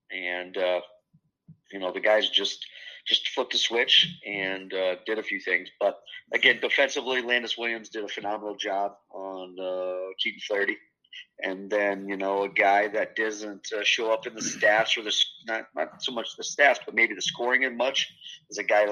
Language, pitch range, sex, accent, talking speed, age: English, 95-105 Hz, male, American, 195 wpm, 30-49